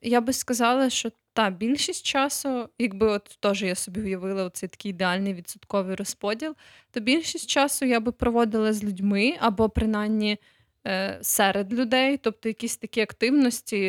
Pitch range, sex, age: 190-230 Hz, female, 20-39